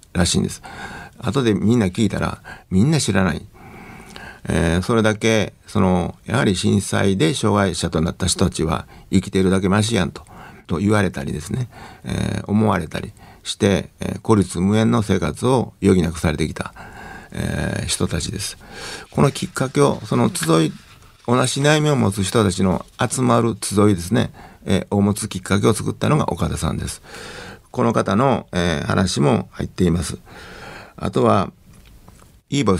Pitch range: 90-110 Hz